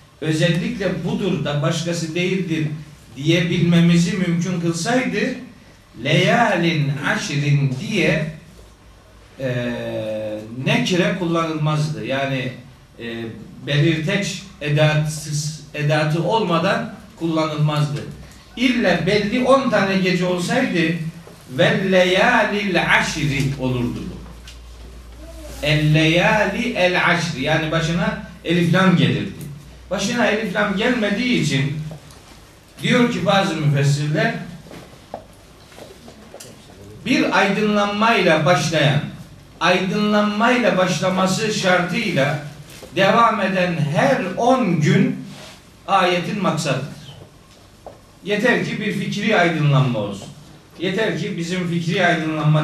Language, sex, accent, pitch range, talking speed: Turkish, male, native, 150-195 Hz, 80 wpm